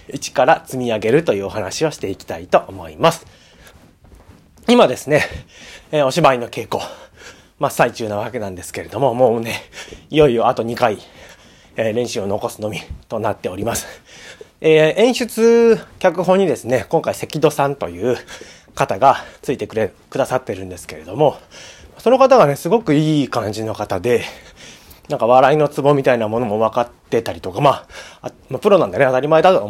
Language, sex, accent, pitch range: Japanese, male, native, 110-160 Hz